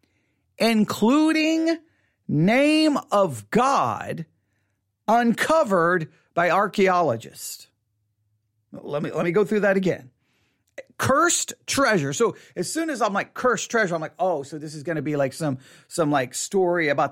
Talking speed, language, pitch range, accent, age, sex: 135 wpm, English, 145-220 Hz, American, 40-59, male